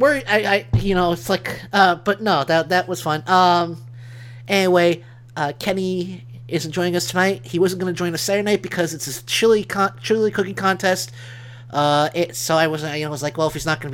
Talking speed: 235 wpm